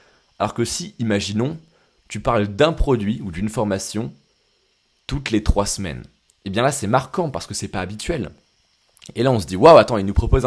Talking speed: 205 wpm